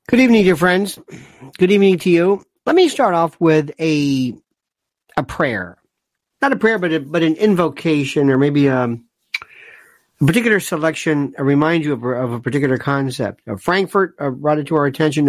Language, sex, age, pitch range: English, male, 50-69, 145-220 Hz